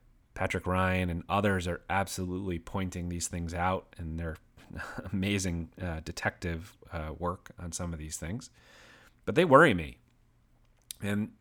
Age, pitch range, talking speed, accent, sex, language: 30-49, 85-95 Hz, 140 wpm, American, male, English